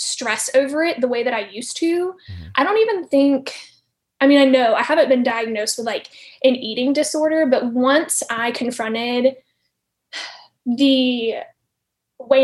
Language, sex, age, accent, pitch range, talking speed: English, female, 10-29, American, 240-285 Hz, 155 wpm